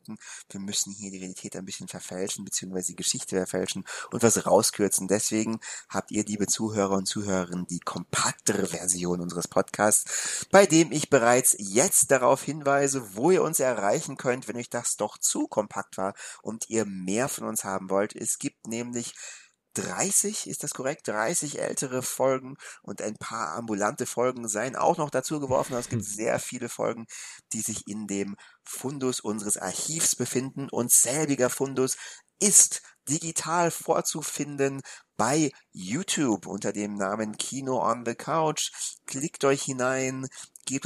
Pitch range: 100-135 Hz